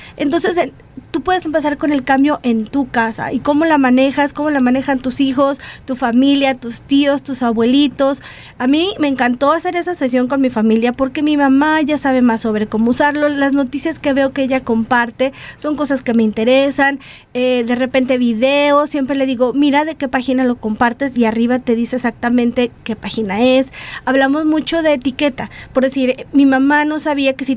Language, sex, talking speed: Spanish, female, 195 wpm